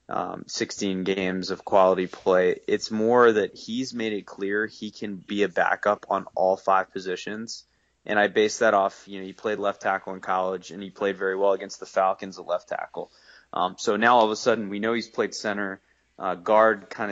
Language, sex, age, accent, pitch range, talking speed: English, male, 20-39, American, 95-115 Hz, 215 wpm